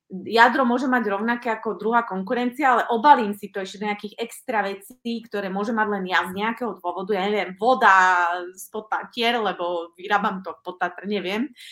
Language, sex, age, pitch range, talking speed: Slovak, female, 30-49, 190-235 Hz, 165 wpm